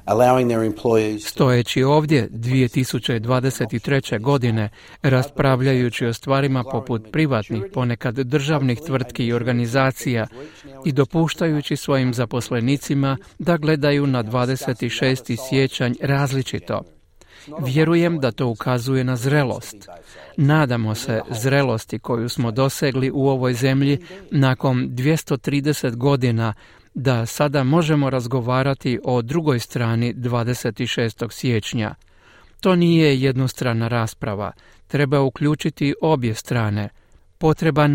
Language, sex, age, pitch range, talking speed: Croatian, male, 40-59, 120-145 Hz, 95 wpm